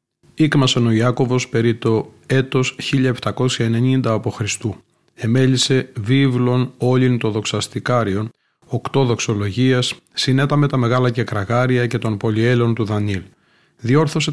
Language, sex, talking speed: Greek, male, 110 wpm